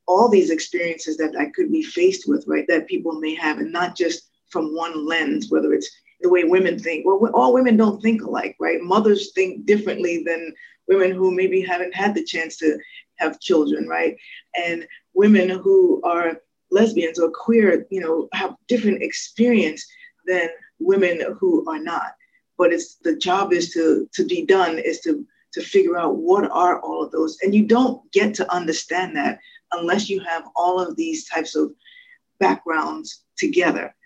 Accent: American